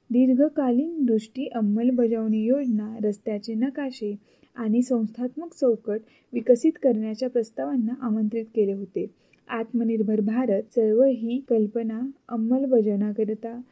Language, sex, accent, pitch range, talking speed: Marathi, female, native, 215-260 Hz, 95 wpm